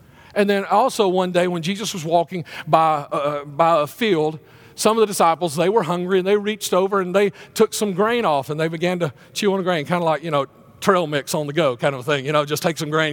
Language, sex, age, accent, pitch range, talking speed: English, male, 40-59, American, 140-200 Hz, 265 wpm